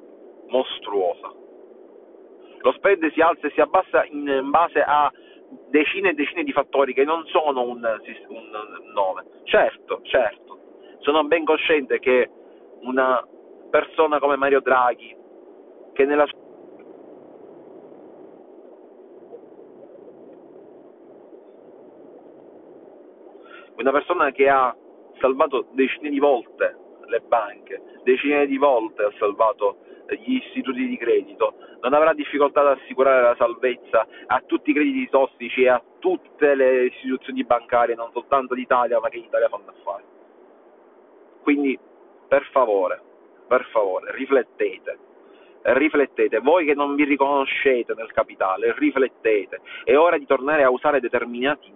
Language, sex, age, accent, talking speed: Italian, male, 40-59, native, 120 wpm